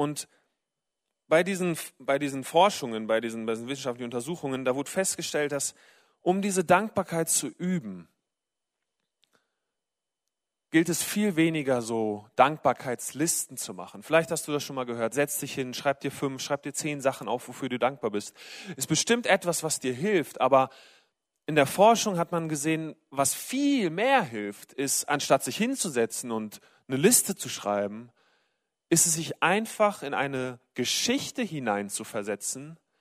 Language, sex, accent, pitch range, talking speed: German, male, German, 135-195 Hz, 155 wpm